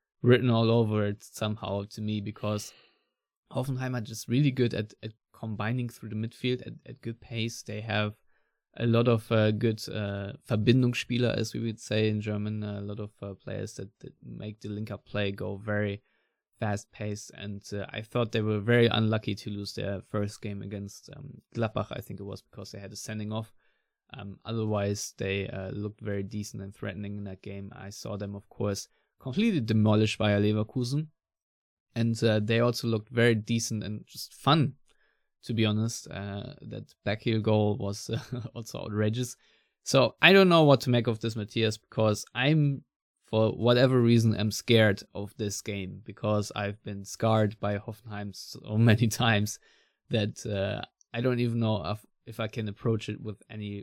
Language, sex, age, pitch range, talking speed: English, male, 20-39, 100-115 Hz, 185 wpm